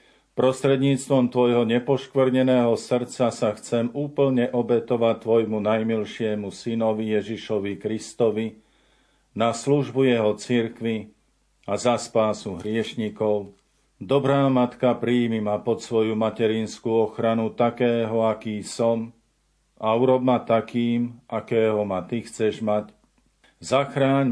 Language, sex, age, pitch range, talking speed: Slovak, male, 50-69, 110-125 Hz, 105 wpm